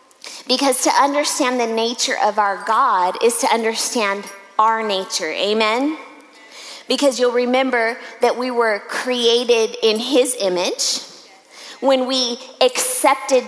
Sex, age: female, 20-39